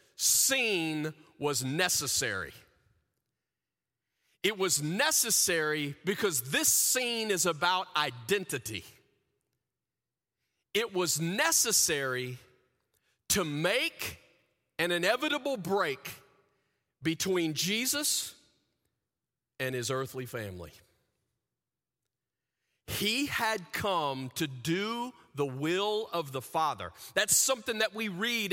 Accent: American